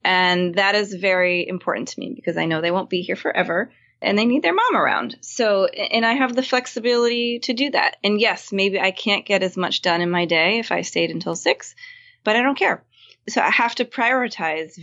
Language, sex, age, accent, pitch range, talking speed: English, female, 20-39, American, 175-210 Hz, 225 wpm